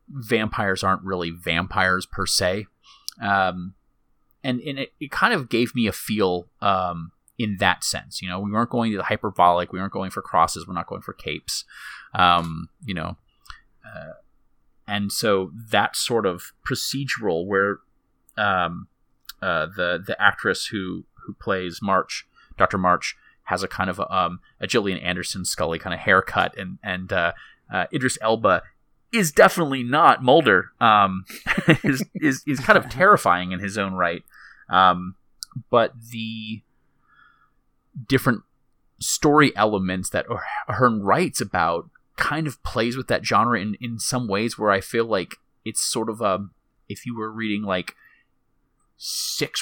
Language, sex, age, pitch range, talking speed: English, male, 30-49, 95-120 Hz, 155 wpm